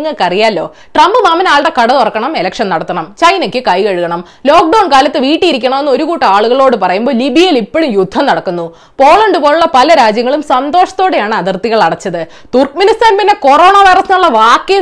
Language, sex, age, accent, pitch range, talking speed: Malayalam, female, 20-39, native, 205-315 Hz, 140 wpm